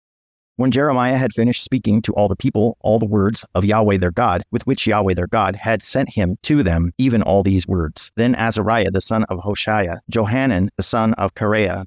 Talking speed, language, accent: 205 wpm, English, American